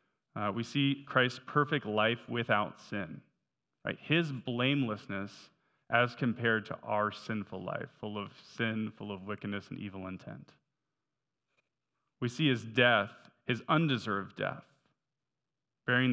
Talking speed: 125 wpm